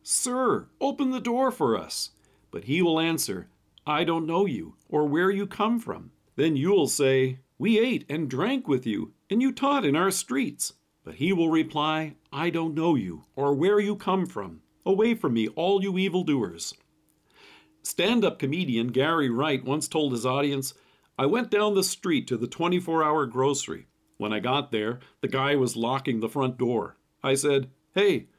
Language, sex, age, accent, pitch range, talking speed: English, male, 50-69, American, 130-200 Hz, 180 wpm